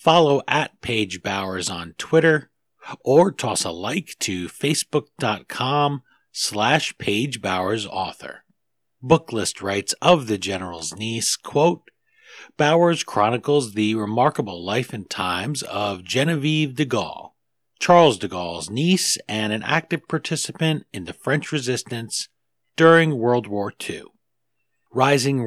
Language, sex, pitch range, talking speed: English, male, 100-150 Hz, 120 wpm